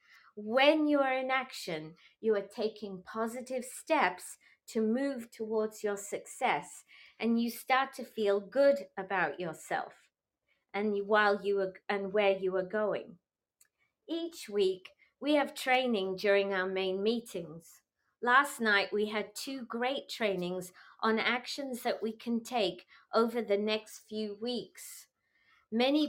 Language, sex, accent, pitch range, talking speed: English, female, British, 200-260 Hz, 140 wpm